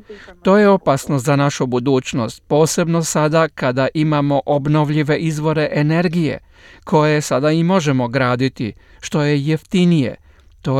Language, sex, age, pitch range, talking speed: Croatian, male, 40-59, 135-170 Hz, 120 wpm